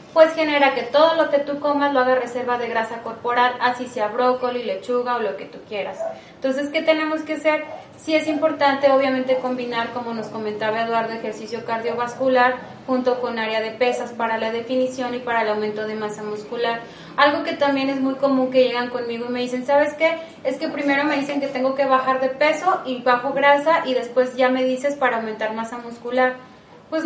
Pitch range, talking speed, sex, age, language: 240-280 Hz, 205 wpm, female, 20-39, Spanish